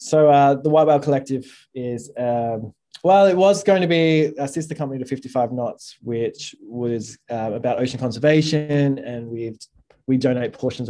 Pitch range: 120-145 Hz